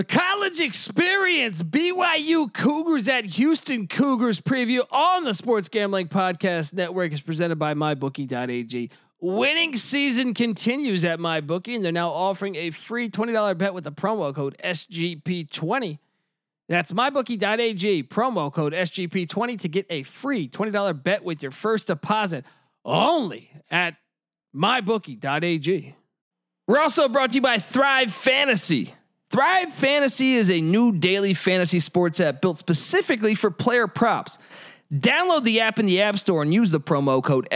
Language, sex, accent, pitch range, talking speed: English, male, American, 170-245 Hz, 140 wpm